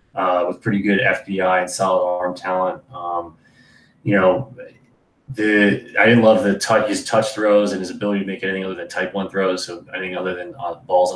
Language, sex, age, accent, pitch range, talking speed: English, male, 20-39, American, 90-100 Hz, 210 wpm